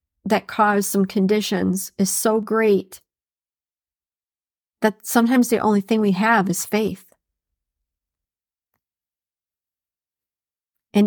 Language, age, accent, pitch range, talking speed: English, 40-59, American, 190-235 Hz, 90 wpm